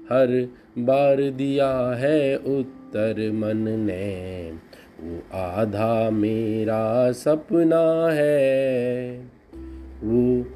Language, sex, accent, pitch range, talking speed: Hindi, male, native, 110-135 Hz, 75 wpm